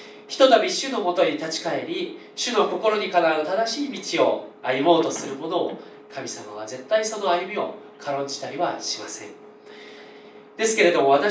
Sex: male